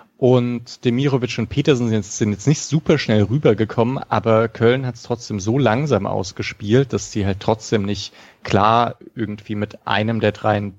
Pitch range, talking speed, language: 105-120 Hz, 165 wpm, German